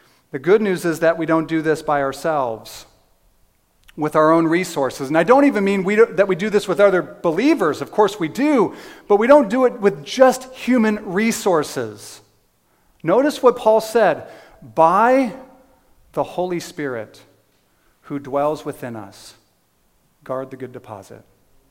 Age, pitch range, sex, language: 40-59, 130-205 Hz, male, English